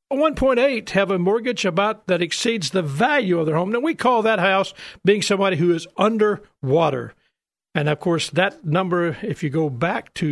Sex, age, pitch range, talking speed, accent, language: male, 50-69, 155-225 Hz, 185 wpm, American, English